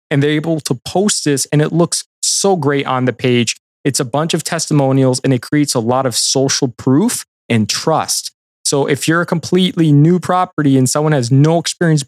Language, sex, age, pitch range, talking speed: English, male, 20-39, 130-160 Hz, 205 wpm